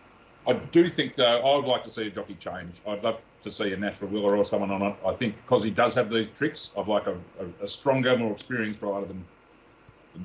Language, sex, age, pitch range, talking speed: English, male, 40-59, 100-125 Hz, 245 wpm